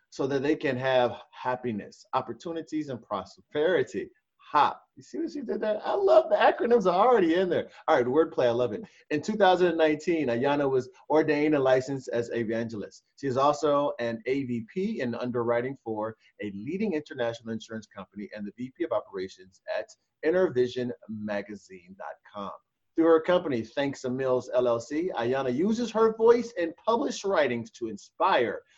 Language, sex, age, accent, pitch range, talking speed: English, male, 30-49, American, 120-170 Hz, 155 wpm